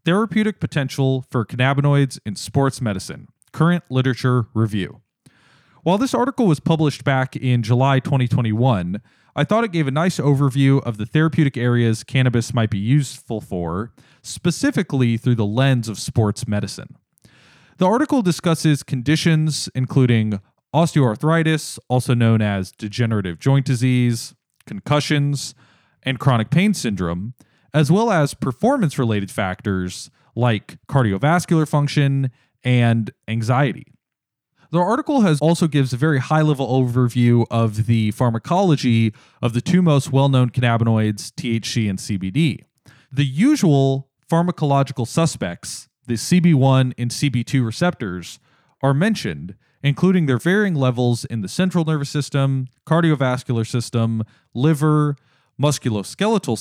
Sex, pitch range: male, 115-155 Hz